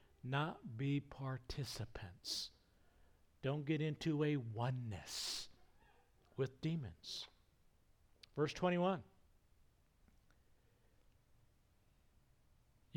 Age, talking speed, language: 60-79, 55 wpm, English